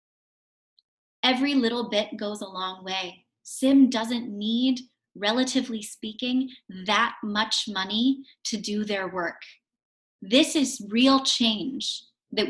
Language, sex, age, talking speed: English, female, 20-39, 115 wpm